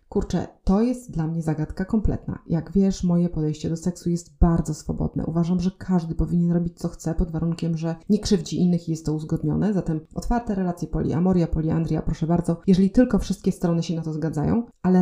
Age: 30-49